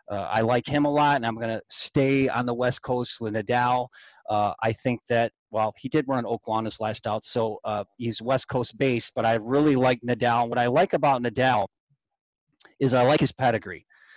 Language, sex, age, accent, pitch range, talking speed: English, male, 30-49, American, 115-135 Hz, 215 wpm